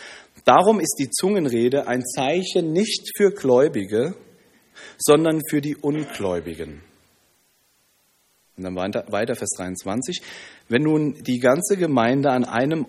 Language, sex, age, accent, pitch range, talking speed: German, male, 40-59, German, 115-195 Hz, 115 wpm